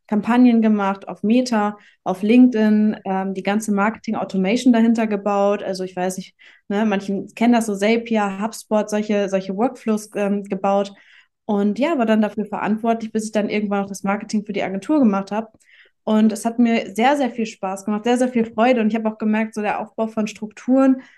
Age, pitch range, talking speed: 20-39, 205-240 Hz, 195 wpm